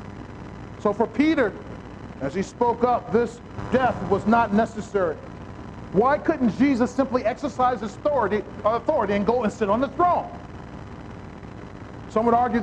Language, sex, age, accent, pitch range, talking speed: English, male, 40-59, American, 225-290 Hz, 140 wpm